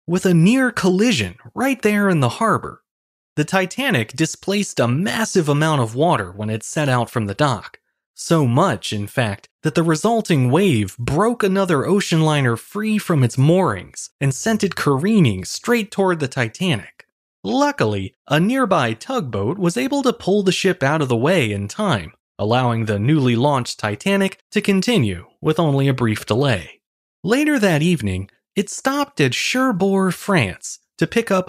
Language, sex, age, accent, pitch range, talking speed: English, male, 20-39, American, 120-195 Hz, 165 wpm